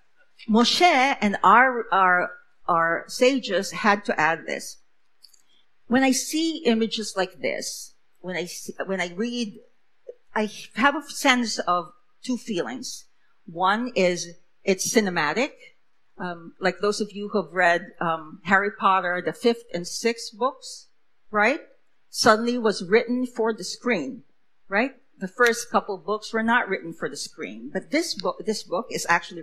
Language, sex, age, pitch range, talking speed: English, female, 50-69, 190-250 Hz, 155 wpm